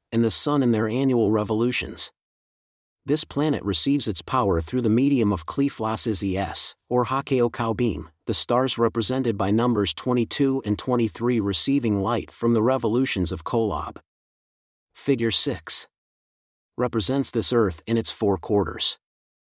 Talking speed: 135 wpm